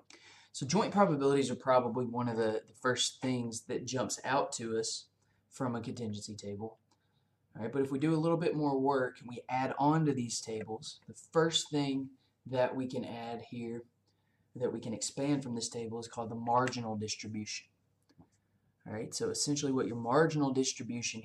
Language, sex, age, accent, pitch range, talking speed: English, male, 20-39, American, 110-125 Hz, 180 wpm